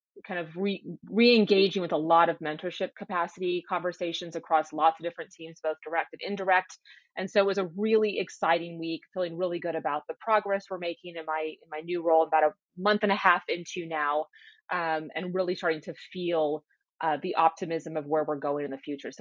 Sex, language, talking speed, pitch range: female, English, 210 wpm, 160-195 Hz